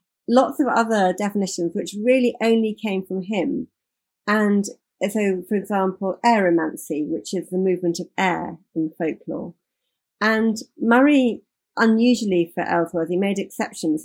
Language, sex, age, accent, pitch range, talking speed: English, female, 40-59, British, 175-220 Hz, 130 wpm